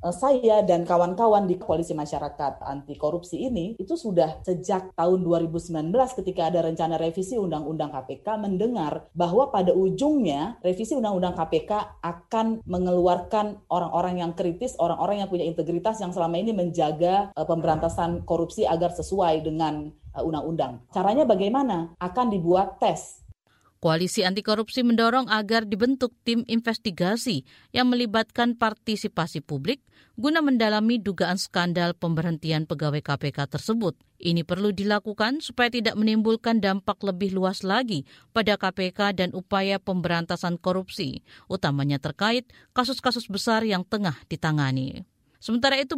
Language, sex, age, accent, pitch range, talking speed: Indonesian, female, 30-49, native, 165-230 Hz, 125 wpm